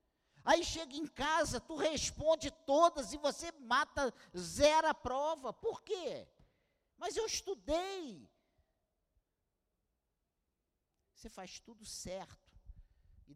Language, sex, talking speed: Portuguese, male, 105 wpm